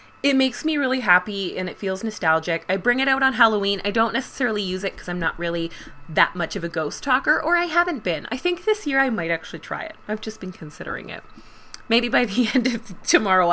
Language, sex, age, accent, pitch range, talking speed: English, female, 20-39, American, 165-220 Hz, 240 wpm